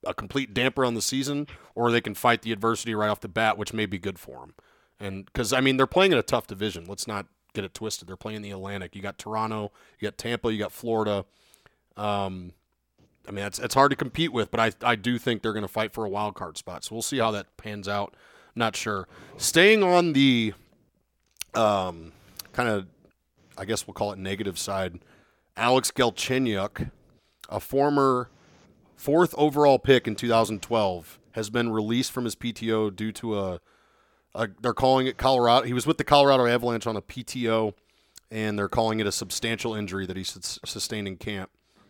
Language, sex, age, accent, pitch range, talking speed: English, male, 30-49, American, 100-125 Hz, 200 wpm